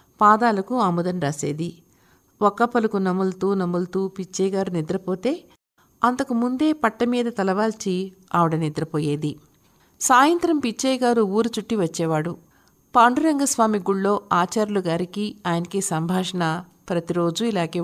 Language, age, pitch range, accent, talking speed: Telugu, 50-69, 175-235 Hz, native, 100 wpm